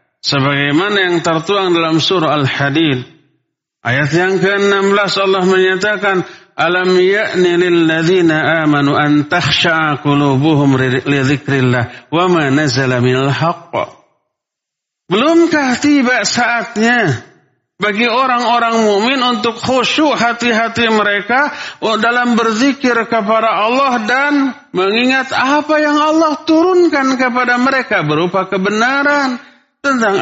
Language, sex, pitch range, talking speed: Indonesian, male, 180-250 Hz, 80 wpm